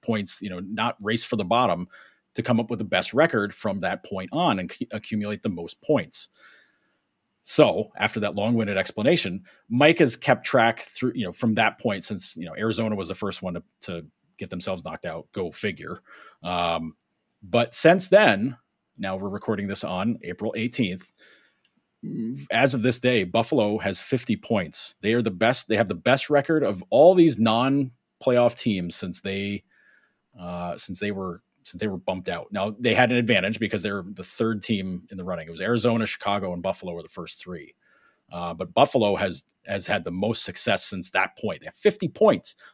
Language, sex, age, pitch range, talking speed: English, male, 30-49, 95-125 Hz, 195 wpm